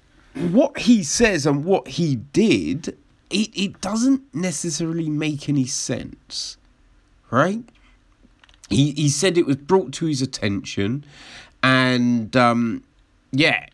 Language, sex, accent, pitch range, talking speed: English, male, British, 115-155 Hz, 120 wpm